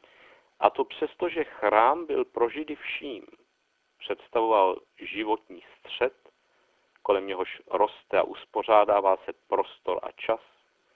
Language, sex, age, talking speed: Czech, male, 50-69, 110 wpm